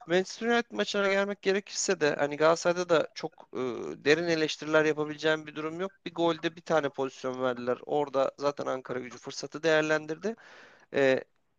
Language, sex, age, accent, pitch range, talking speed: Turkish, male, 40-59, native, 145-180 Hz, 155 wpm